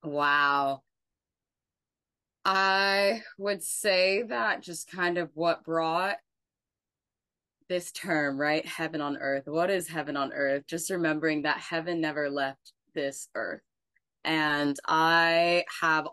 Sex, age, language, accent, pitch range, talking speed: female, 20-39, English, American, 145-170 Hz, 120 wpm